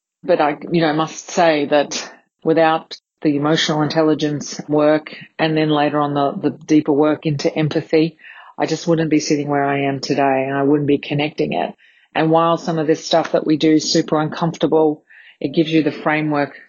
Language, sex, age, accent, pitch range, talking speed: English, female, 40-59, Australian, 145-160 Hz, 195 wpm